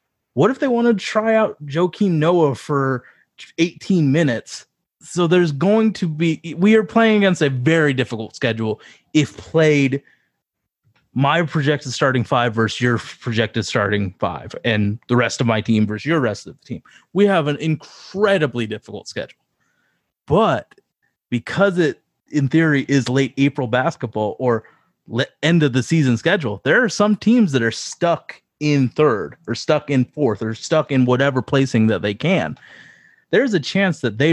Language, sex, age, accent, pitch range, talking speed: English, male, 30-49, American, 115-155 Hz, 165 wpm